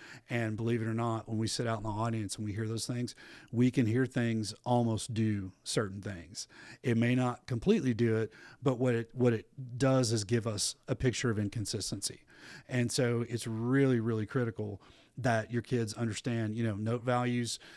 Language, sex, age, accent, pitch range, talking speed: English, male, 40-59, American, 110-125 Hz, 195 wpm